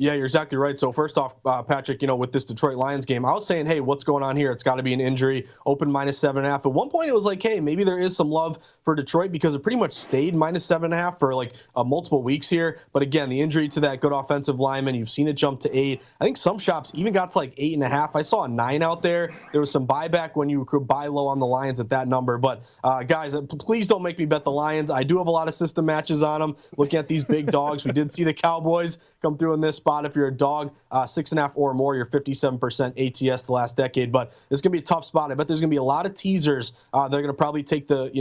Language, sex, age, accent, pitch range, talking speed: English, male, 20-39, American, 135-160 Hz, 285 wpm